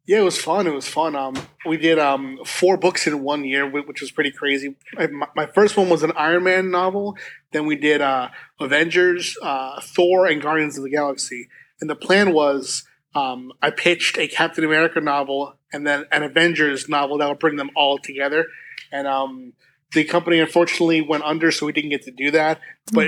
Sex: male